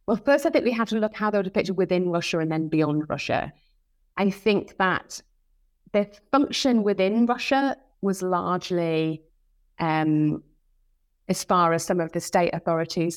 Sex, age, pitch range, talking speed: female, 30-49, 160-210 Hz, 165 wpm